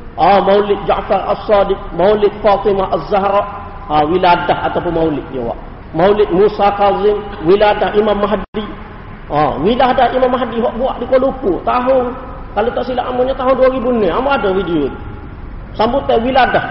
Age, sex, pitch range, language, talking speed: 40-59, male, 200-255 Hz, Malay, 140 wpm